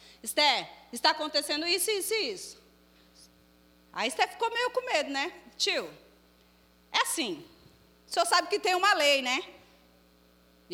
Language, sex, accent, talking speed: Portuguese, female, Brazilian, 145 wpm